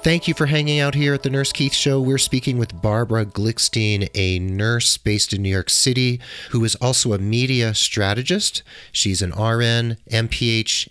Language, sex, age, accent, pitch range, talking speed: English, male, 40-59, American, 90-120 Hz, 180 wpm